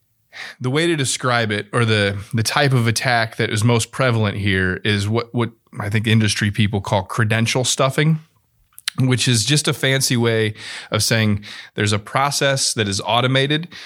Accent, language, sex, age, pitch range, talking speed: American, English, male, 30-49, 110-130 Hz, 175 wpm